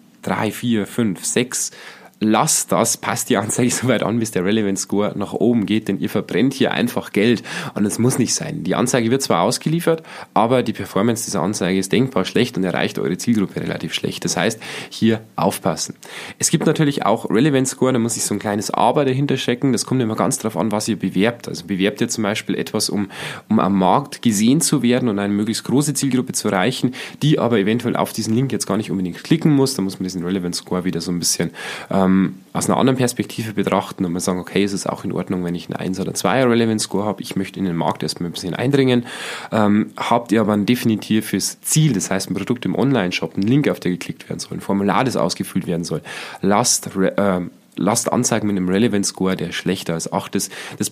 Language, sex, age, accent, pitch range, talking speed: German, male, 20-39, German, 95-125 Hz, 220 wpm